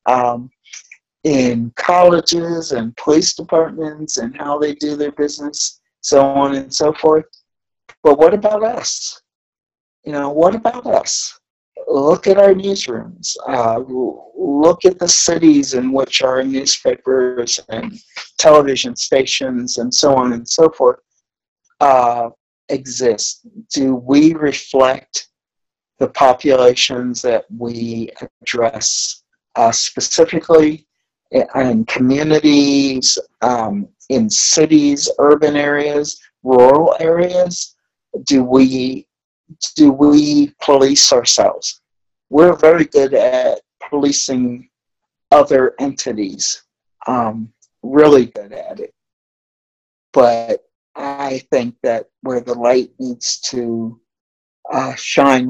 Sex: male